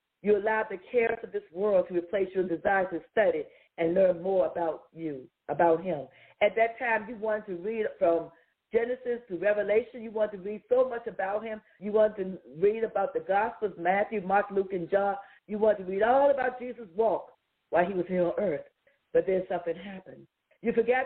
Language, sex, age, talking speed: English, female, 50-69, 200 wpm